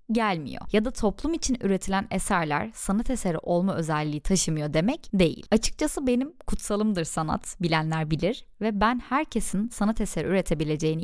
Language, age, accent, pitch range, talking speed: Turkish, 10-29, native, 170-225 Hz, 140 wpm